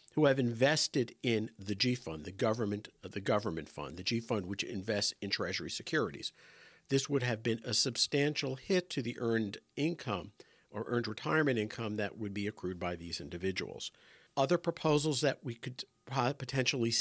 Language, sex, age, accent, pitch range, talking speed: English, male, 50-69, American, 105-130 Hz, 165 wpm